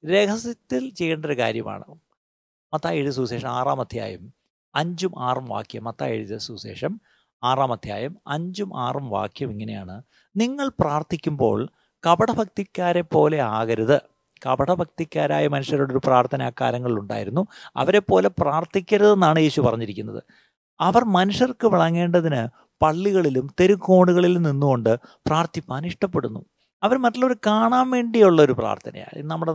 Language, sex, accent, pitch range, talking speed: Malayalam, male, native, 130-190 Hz, 105 wpm